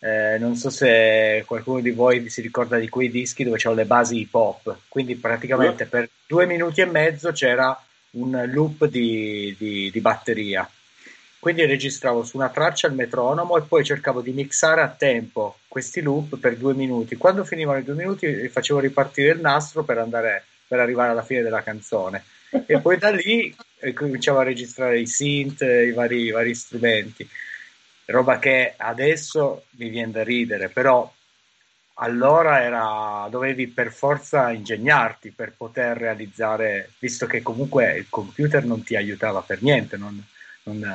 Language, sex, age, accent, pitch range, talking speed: Italian, male, 30-49, native, 115-135 Hz, 155 wpm